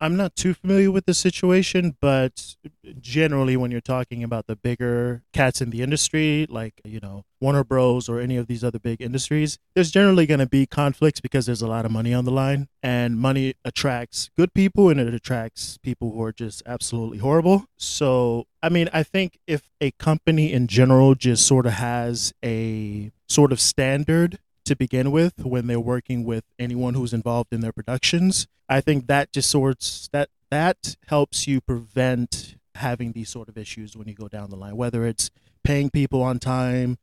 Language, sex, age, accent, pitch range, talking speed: English, male, 20-39, American, 120-145 Hz, 190 wpm